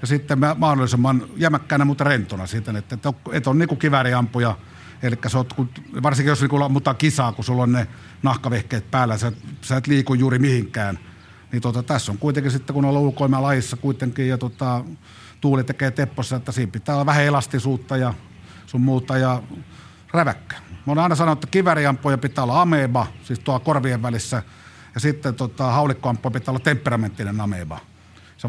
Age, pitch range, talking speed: 50-69, 115-145 Hz, 170 wpm